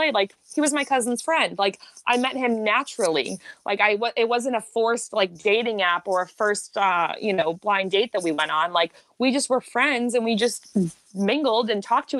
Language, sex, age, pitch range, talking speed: English, female, 20-39, 190-245 Hz, 215 wpm